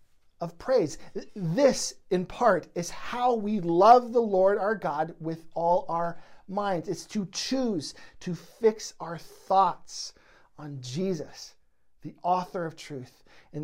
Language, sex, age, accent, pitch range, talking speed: English, male, 40-59, American, 165-200 Hz, 135 wpm